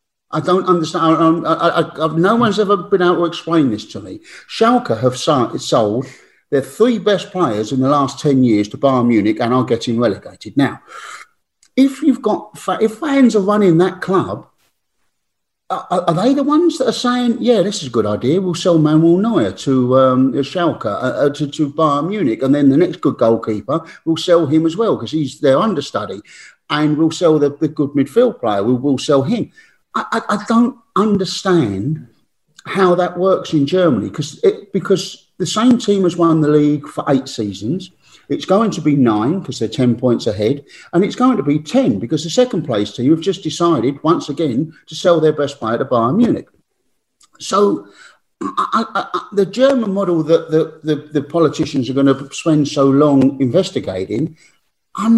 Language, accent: English, British